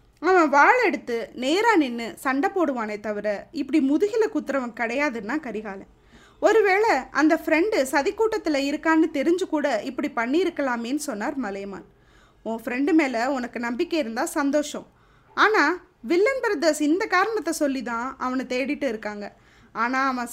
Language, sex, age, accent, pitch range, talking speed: Tamil, female, 20-39, native, 245-335 Hz, 125 wpm